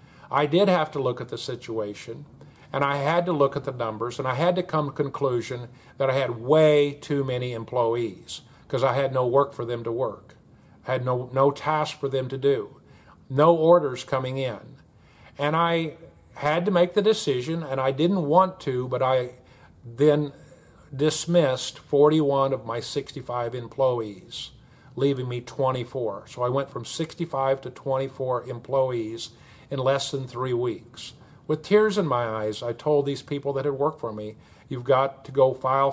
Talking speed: 180 wpm